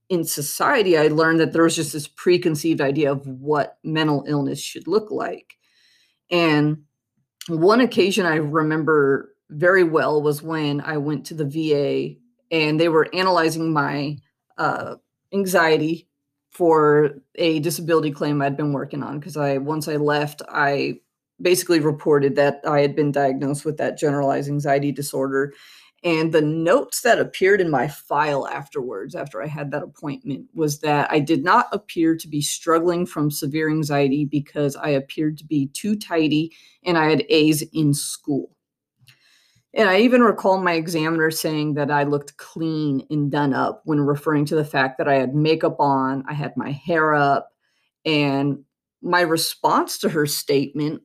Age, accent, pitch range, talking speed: 30-49, American, 145-165 Hz, 165 wpm